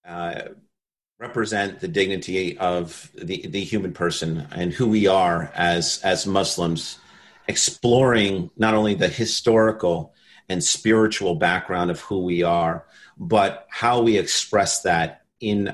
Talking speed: 130 wpm